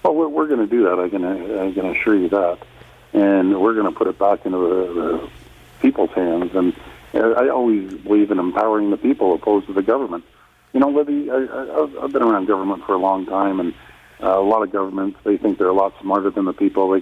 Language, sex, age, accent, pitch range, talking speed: English, male, 50-69, American, 90-110 Hz, 220 wpm